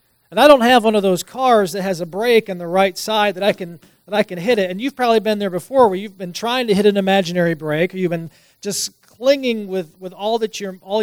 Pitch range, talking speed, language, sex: 175-205 Hz, 265 wpm, English, male